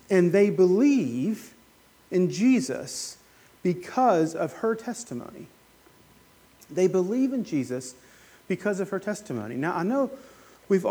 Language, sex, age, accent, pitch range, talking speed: English, male, 40-59, American, 145-210 Hz, 115 wpm